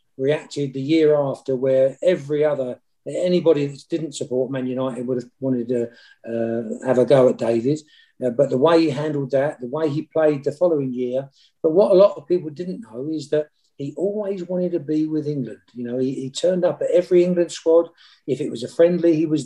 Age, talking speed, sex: 50-69, 220 wpm, male